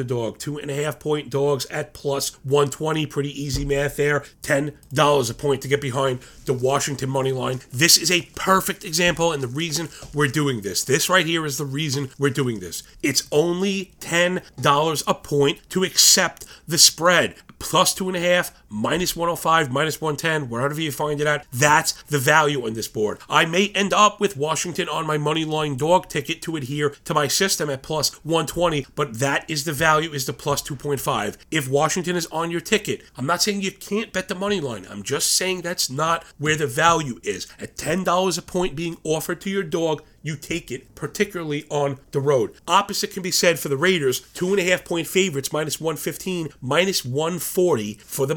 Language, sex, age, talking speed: English, male, 40-59, 205 wpm